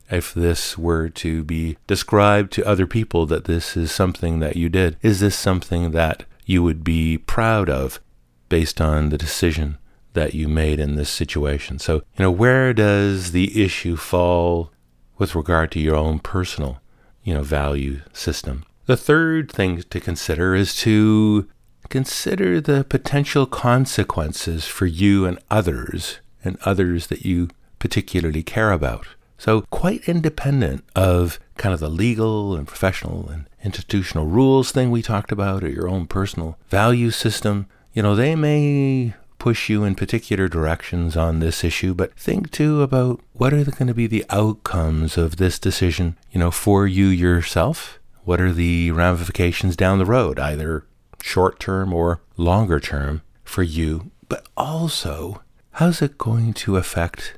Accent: American